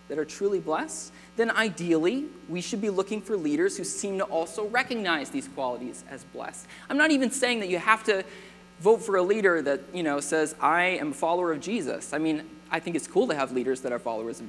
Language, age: English, 20-39